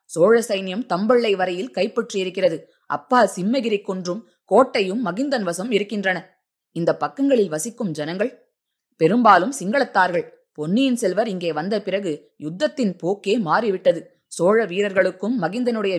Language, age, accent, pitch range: Tamil, 20-39, native, 175-235 Hz